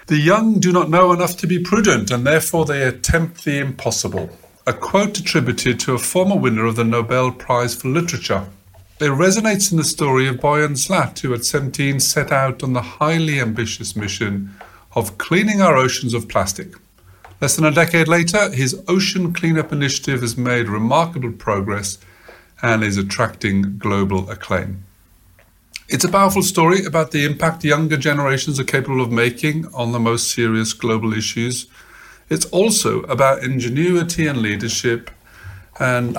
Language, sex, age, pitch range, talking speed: English, male, 50-69, 110-160 Hz, 160 wpm